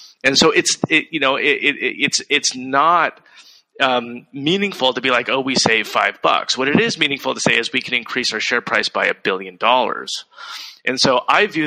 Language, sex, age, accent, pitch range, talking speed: Hebrew, male, 30-49, American, 125-175 Hz, 210 wpm